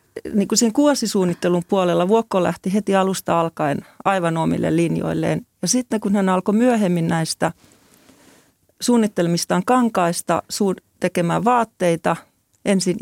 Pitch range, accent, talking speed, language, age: 160-195 Hz, native, 110 wpm, Finnish, 30-49